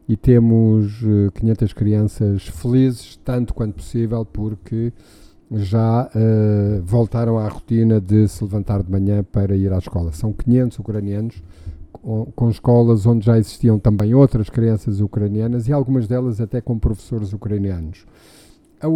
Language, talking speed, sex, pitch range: Portuguese, 135 wpm, male, 105-130 Hz